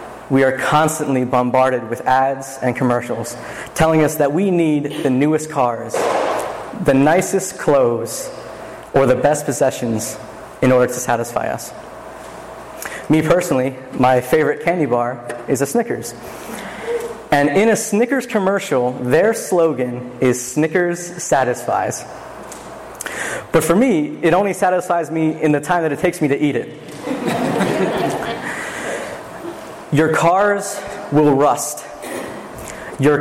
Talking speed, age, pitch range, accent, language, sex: 125 wpm, 30-49, 130-170 Hz, American, English, male